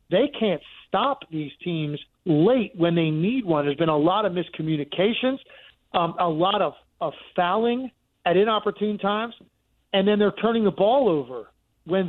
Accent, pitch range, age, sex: American, 165-200 Hz, 40-59, male